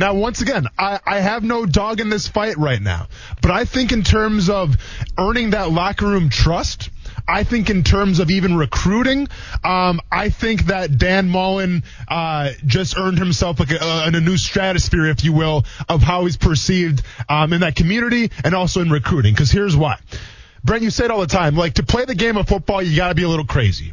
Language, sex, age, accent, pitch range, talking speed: English, male, 20-39, American, 135-195 Hz, 215 wpm